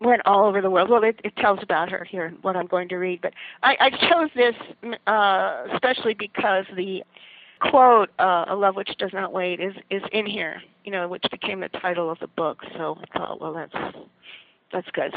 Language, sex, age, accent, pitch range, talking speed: English, female, 50-69, American, 185-230 Hz, 220 wpm